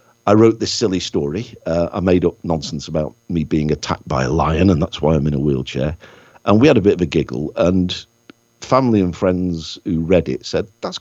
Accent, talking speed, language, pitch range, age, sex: British, 225 wpm, English, 80-105 Hz, 50-69, male